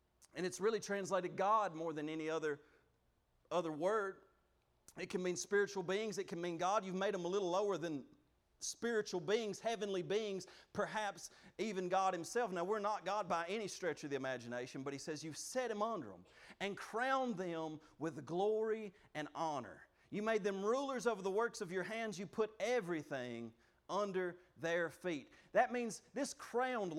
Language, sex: English, male